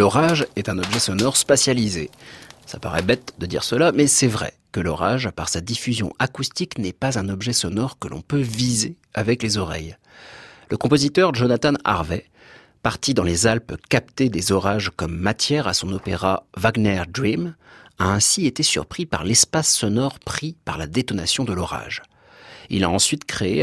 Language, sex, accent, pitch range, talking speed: French, male, French, 95-135 Hz, 175 wpm